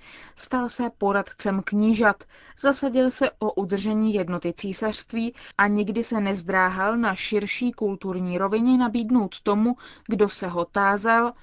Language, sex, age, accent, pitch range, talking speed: Czech, female, 20-39, native, 195-240 Hz, 125 wpm